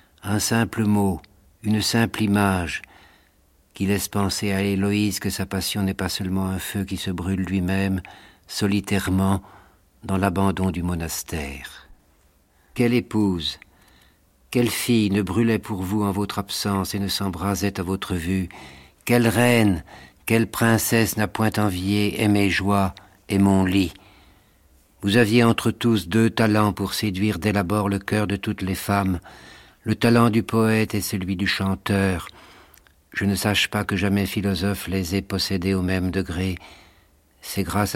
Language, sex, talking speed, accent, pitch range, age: French, male, 150 wpm, French, 95-105 Hz, 60-79